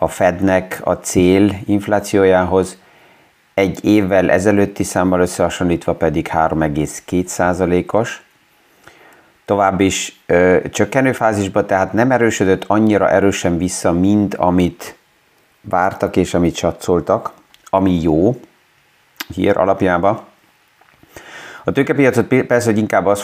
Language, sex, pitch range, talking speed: Hungarian, male, 90-100 Hz, 100 wpm